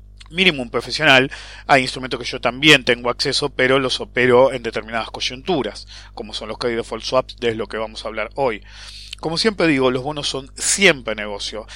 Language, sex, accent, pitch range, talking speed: English, male, Argentinian, 120-170 Hz, 180 wpm